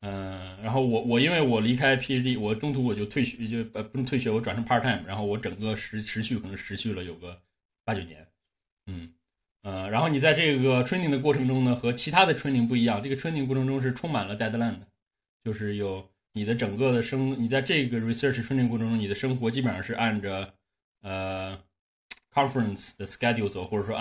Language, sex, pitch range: Chinese, male, 105-130 Hz